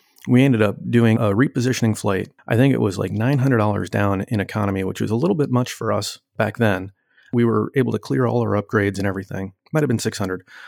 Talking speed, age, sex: 220 wpm, 30-49, male